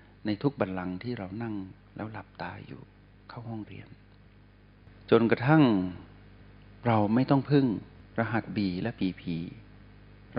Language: Thai